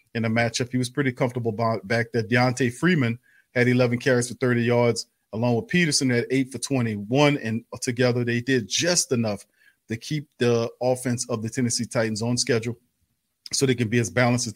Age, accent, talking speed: 40-59, American, 195 wpm